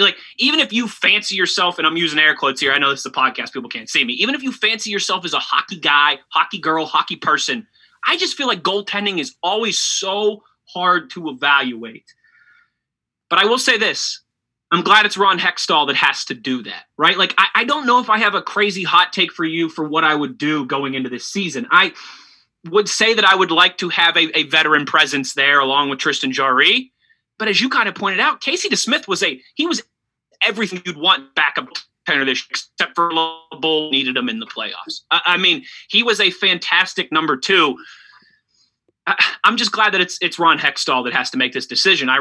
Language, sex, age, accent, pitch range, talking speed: English, male, 20-39, American, 155-210 Hz, 225 wpm